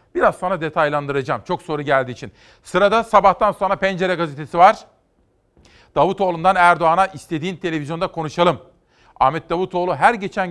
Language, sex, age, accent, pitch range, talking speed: Turkish, male, 40-59, native, 150-180 Hz, 125 wpm